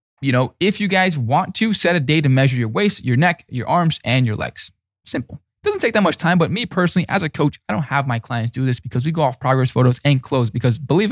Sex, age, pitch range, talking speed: male, 20-39, 115-150 Hz, 270 wpm